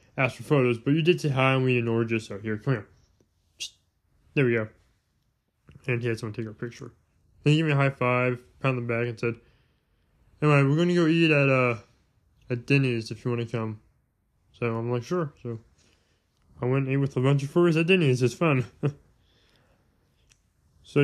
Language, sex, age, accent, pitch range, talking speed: English, male, 20-39, American, 115-145 Hz, 210 wpm